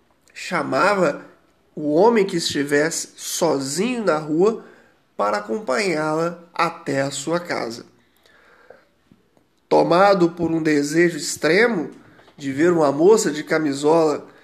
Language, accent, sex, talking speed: Portuguese, Brazilian, male, 105 wpm